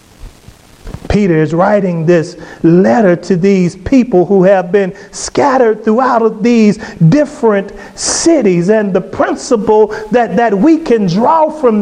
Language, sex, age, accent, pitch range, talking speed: English, male, 40-59, American, 185-280 Hz, 125 wpm